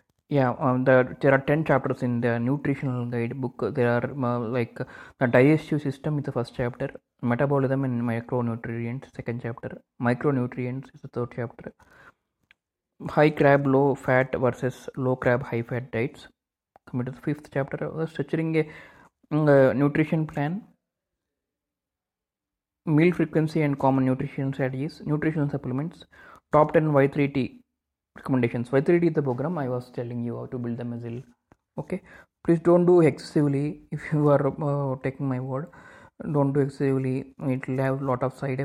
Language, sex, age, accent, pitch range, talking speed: English, male, 20-39, Indian, 125-145 Hz, 155 wpm